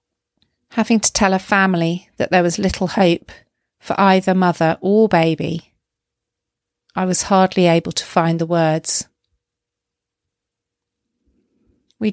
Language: English